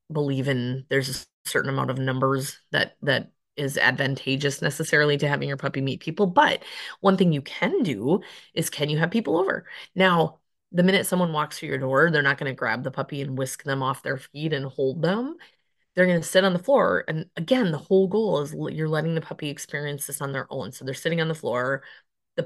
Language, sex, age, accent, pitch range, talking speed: English, female, 20-39, American, 140-175 Hz, 225 wpm